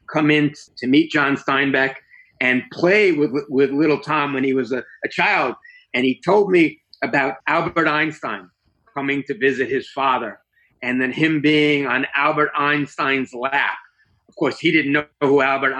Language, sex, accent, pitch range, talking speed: English, male, American, 120-145 Hz, 170 wpm